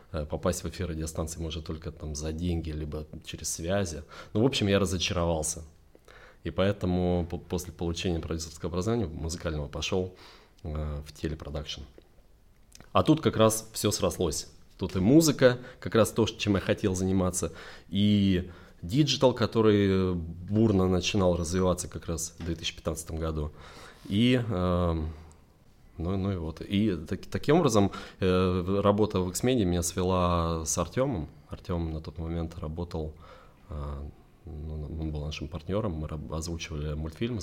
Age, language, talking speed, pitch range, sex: 20-39, Russian, 140 wpm, 80-95 Hz, male